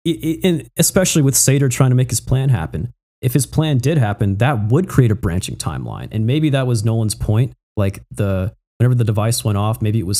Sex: male